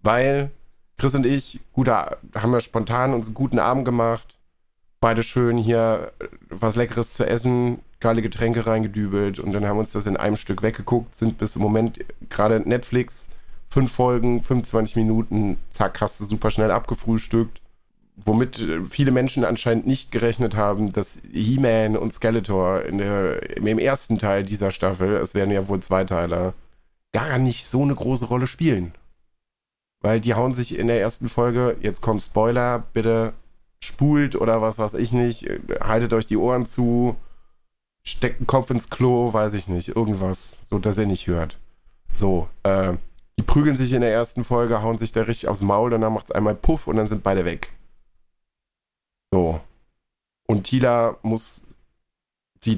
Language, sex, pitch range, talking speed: German, male, 100-120 Hz, 165 wpm